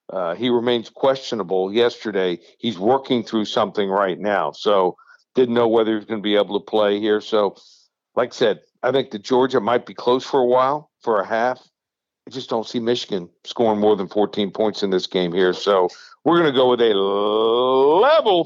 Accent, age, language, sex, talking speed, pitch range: American, 60-79, English, male, 200 wpm, 110-130 Hz